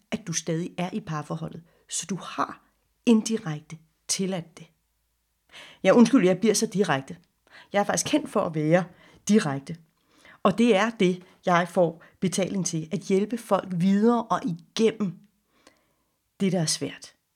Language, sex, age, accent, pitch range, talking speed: Danish, female, 40-59, native, 160-205 Hz, 150 wpm